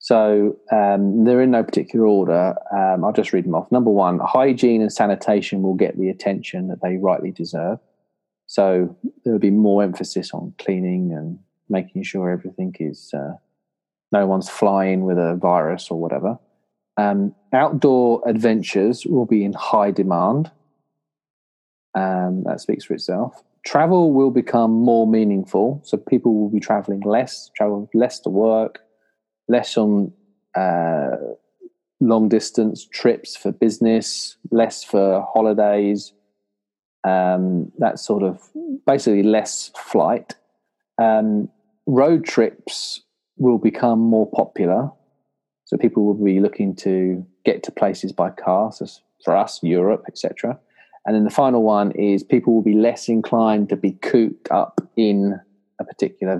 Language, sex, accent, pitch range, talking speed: English, male, British, 95-115 Hz, 145 wpm